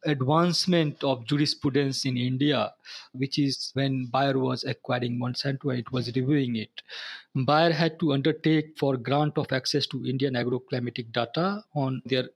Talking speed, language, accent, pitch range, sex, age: 145 wpm, English, Indian, 130-155 Hz, male, 50-69